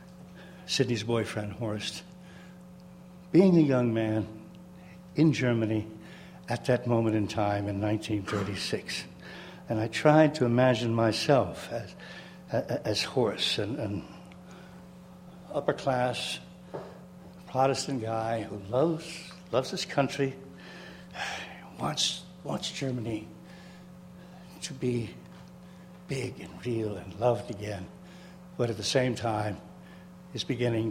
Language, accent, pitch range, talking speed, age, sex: English, American, 110-180 Hz, 105 wpm, 60-79, male